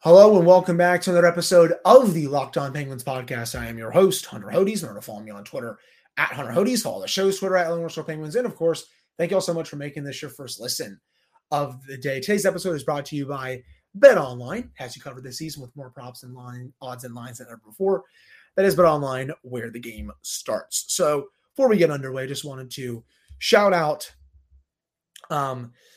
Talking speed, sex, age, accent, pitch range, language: 225 wpm, male, 30-49, American, 120-165 Hz, English